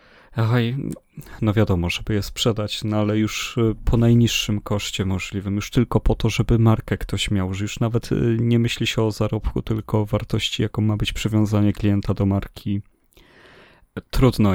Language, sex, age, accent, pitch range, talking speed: Polish, male, 30-49, native, 100-115 Hz, 160 wpm